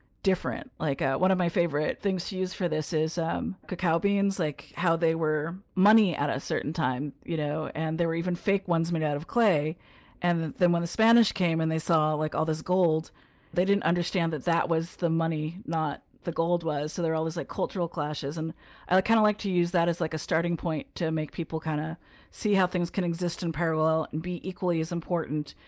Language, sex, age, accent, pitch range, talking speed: English, female, 40-59, American, 155-180 Hz, 230 wpm